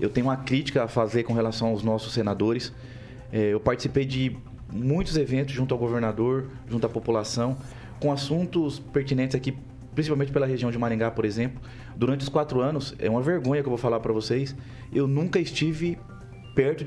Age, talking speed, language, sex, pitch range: 30-49, 180 wpm, Portuguese, male, 120-150 Hz